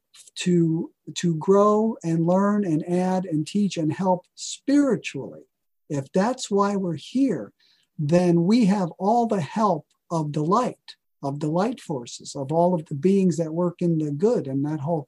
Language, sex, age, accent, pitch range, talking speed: English, male, 50-69, American, 165-210 Hz, 170 wpm